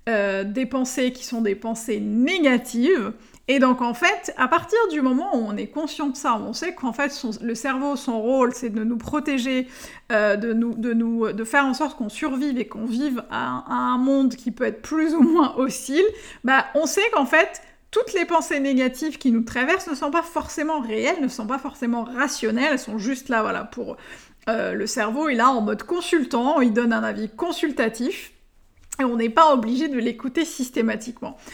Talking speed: 205 wpm